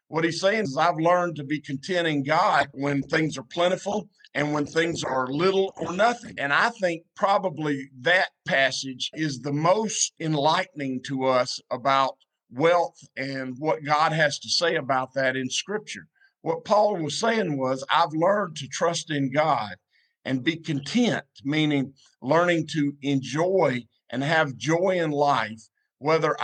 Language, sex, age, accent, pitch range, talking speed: English, male, 50-69, American, 135-165 Hz, 160 wpm